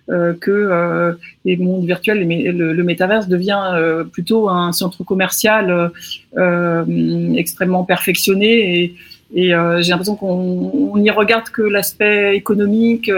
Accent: French